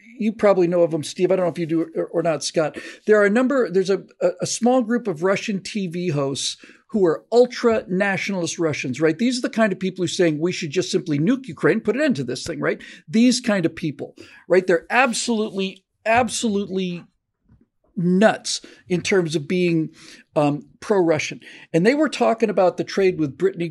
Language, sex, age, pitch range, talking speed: English, male, 50-69, 170-230 Hz, 200 wpm